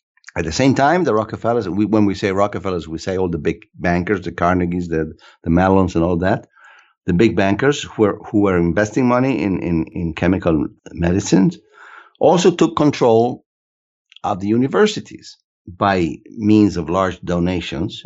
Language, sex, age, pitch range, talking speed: English, male, 50-69, 90-115 Hz, 165 wpm